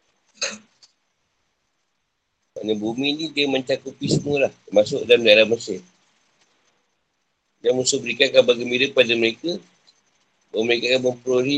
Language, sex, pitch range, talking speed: Malay, male, 125-160 Hz, 105 wpm